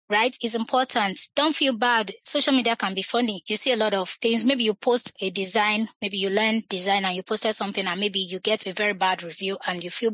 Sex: female